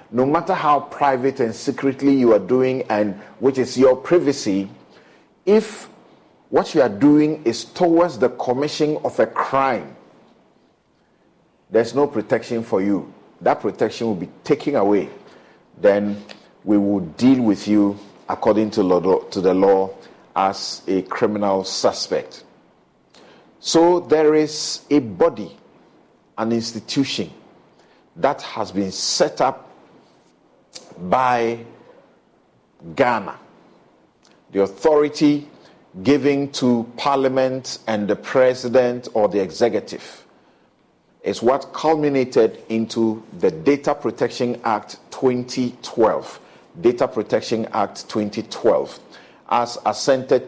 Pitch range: 105-140 Hz